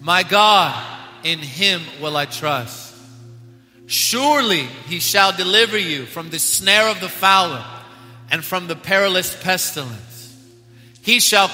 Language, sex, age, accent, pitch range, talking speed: English, male, 30-49, American, 130-210 Hz, 130 wpm